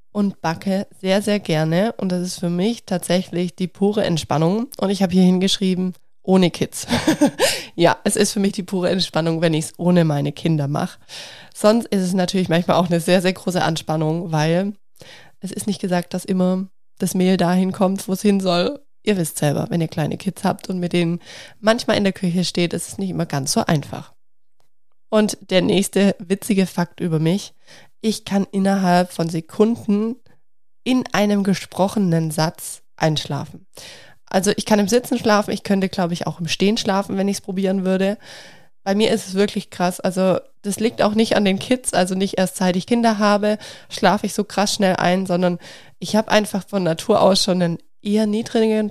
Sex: female